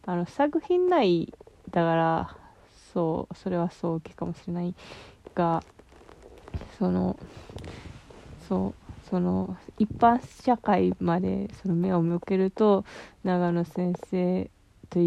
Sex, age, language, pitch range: female, 20-39, Japanese, 160-180 Hz